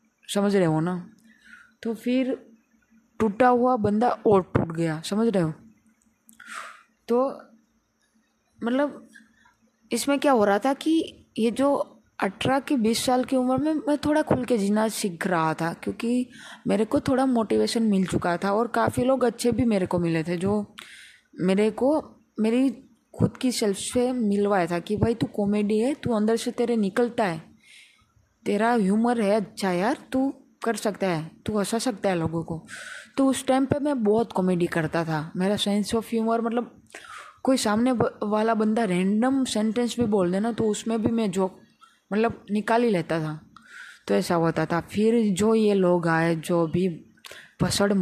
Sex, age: female, 20-39